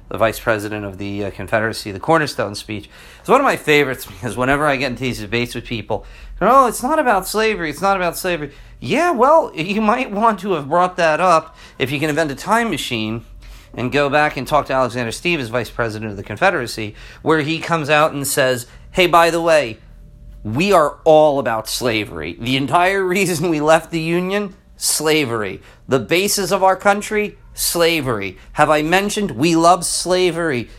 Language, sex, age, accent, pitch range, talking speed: English, male, 40-59, American, 125-175 Hz, 190 wpm